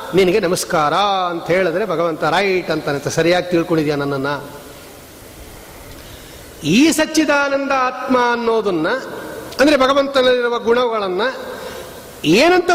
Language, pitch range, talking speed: Kannada, 180-255 Hz, 80 wpm